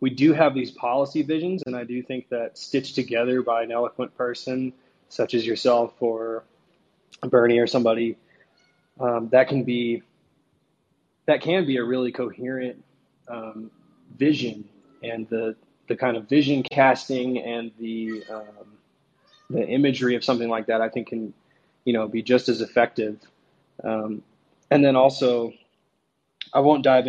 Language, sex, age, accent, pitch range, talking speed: English, male, 20-39, American, 110-125 Hz, 150 wpm